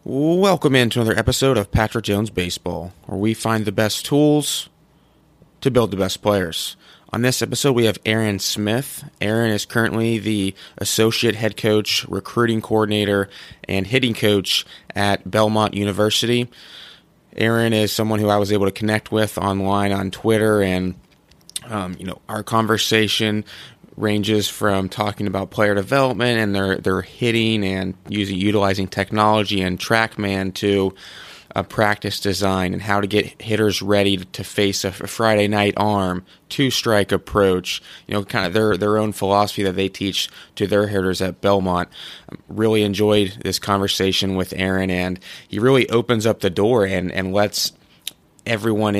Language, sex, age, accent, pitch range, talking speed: English, male, 20-39, American, 95-110 Hz, 160 wpm